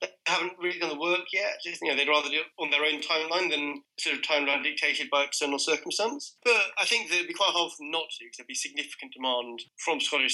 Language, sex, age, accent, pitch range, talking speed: English, male, 20-39, British, 125-160 Hz, 245 wpm